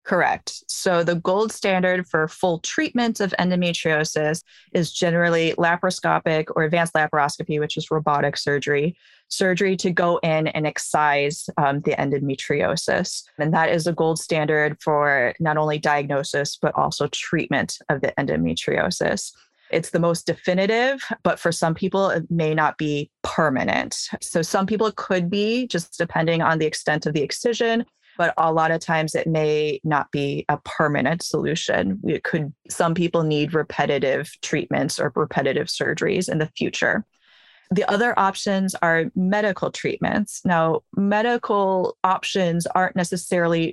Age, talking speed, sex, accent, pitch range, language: 20-39, 145 wpm, female, American, 155-185 Hz, English